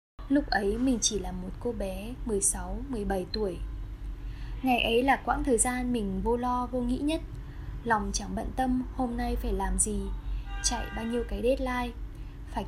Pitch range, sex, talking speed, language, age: 200-250 Hz, female, 175 wpm, Vietnamese, 10-29